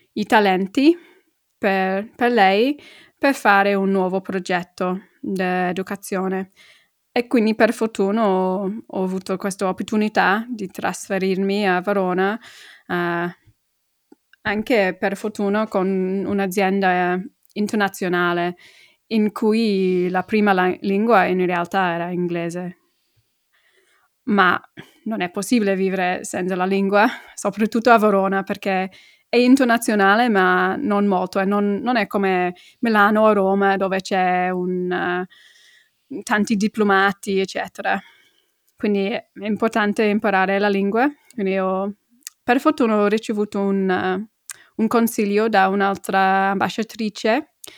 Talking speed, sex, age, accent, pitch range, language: 115 wpm, female, 20-39, native, 190-220 Hz, Italian